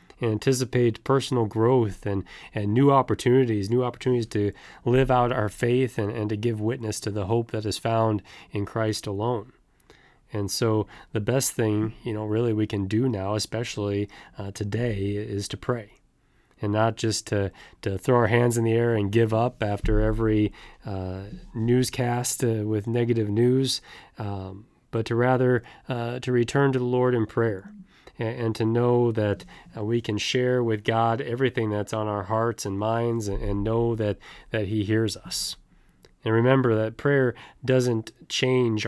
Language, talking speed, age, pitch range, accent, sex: English, 170 wpm, 30-49, 105-120 Hz, American, male